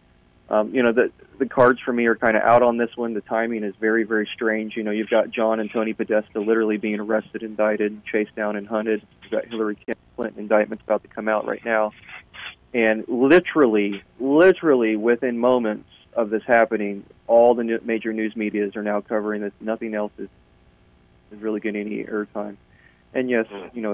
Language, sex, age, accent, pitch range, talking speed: English, male, 30-49, American, 105-115 Hz, 195 wpm